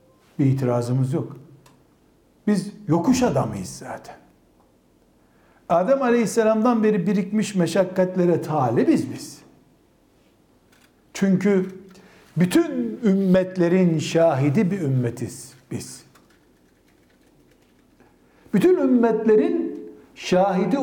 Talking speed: 65 wpm